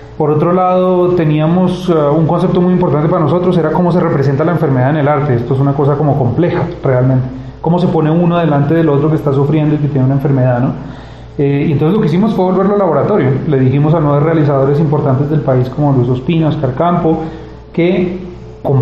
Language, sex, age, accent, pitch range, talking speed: Spanish, male, 30-49, Colombian, 140-165 Hz, 215 wpm